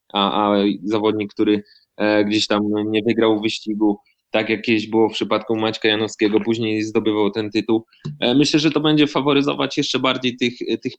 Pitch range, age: 110-125 Hz, 20-39